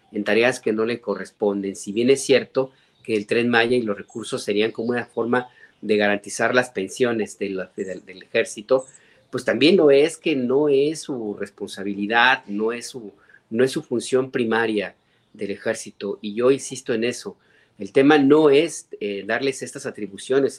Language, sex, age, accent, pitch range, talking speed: Spanish, male, 40-59, Mexican, 105-135 Hz, 165 wpm